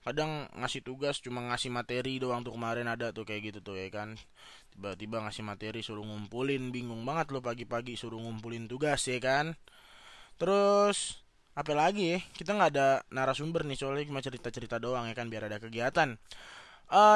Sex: male